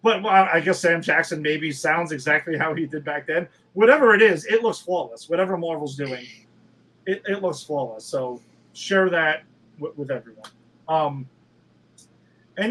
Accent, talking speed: American, 165 wpm